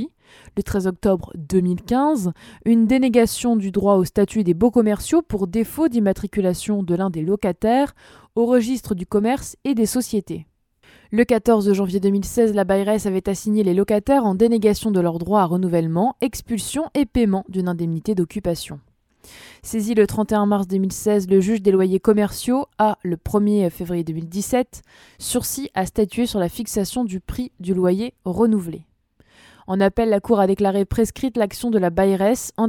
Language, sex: French, female